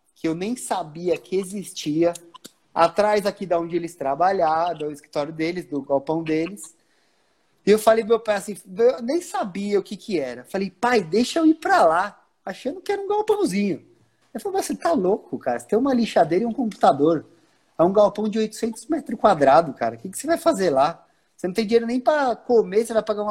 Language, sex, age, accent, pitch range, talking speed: Portuguese, male, 20-39, Brazilian, 160-220 Hz, 215 wpm